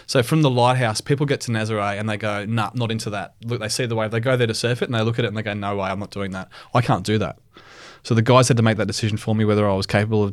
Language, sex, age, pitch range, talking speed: English, male, 20-39, 105-120 Hz, 345 wpm